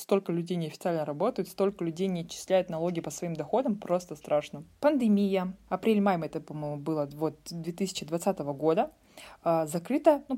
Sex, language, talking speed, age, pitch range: female, Russian, 135 wpm, 20-39, 175-225 Hz